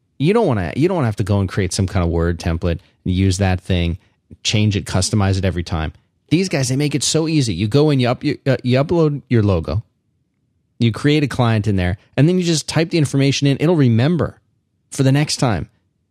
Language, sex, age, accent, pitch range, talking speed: English, male, 30-49, American, 100-130 Hz, 240 wpm